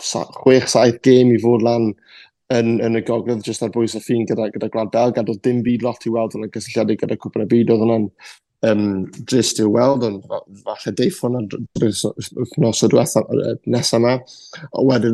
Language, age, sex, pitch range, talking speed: English, 20-39, male, 115-125 Hz, 160 wpm